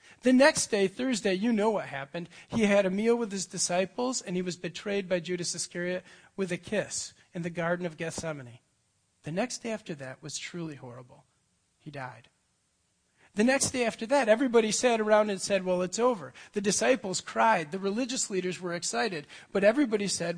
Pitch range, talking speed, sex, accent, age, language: 150-195 Hz, 190 wpm, male, American, 40-59, English